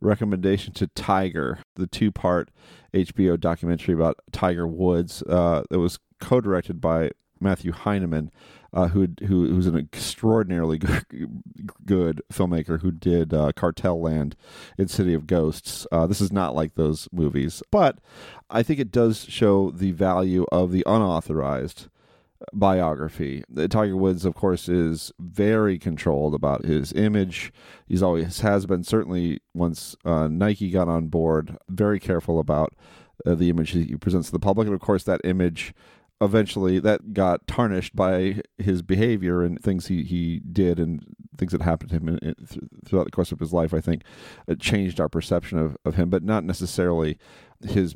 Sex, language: male, English